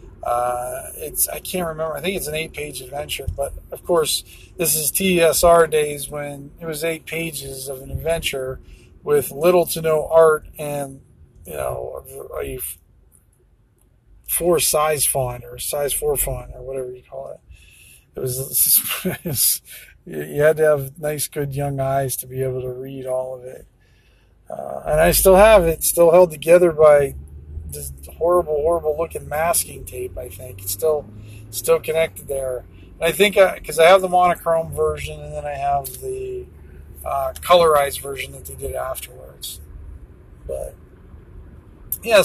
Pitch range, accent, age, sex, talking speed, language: 105-165 Hz, American, 40-59, male, 160 wpm, English